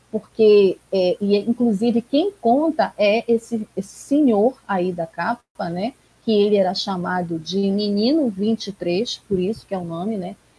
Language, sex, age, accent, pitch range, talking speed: Portuguese, female, 30-49, Brazilian, 185-230 Hz, 160 wpm